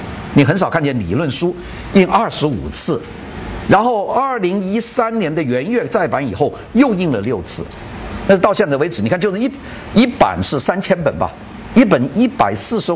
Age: 50-69